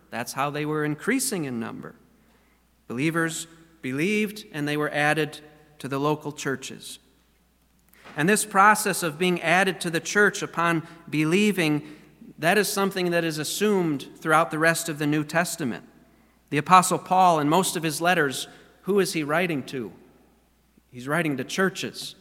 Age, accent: 40-59, American